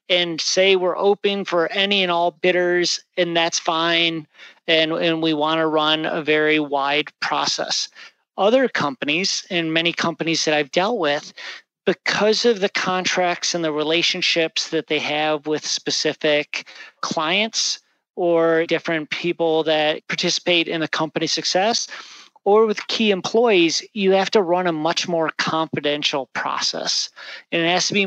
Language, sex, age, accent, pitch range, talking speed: English, male, 40-59, American, 155-180 Hz, 150 wpm